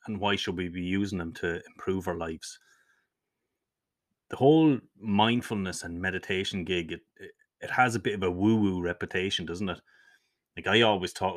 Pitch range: 90-110 Hz